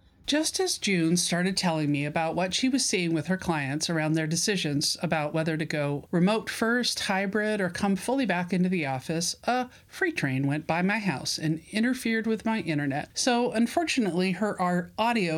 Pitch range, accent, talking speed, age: 160-215 Hz, American, 185 wpm, 40-59